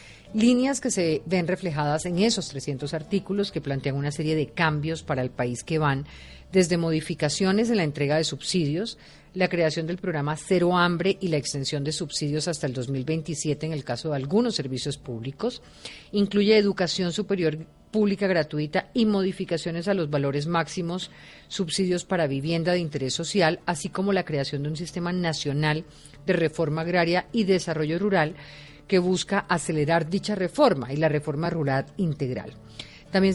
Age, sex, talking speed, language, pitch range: 30-49, female, 160 wpm, Spanish, 145-185 Hz